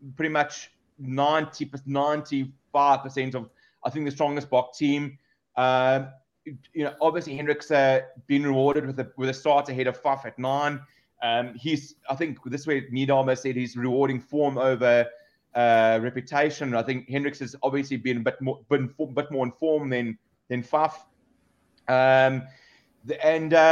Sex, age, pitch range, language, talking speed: male, 20-39, 130-155 Hz, English, 160 wpm